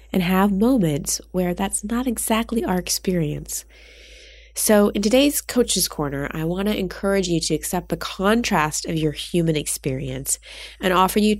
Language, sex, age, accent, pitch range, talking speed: English, female, 20-39, American, 155-225 Hz, 155 wpm